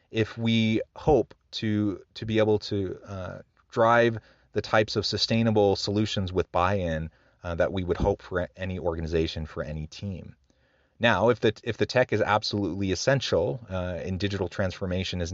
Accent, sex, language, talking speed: American, male, English, 160 wpm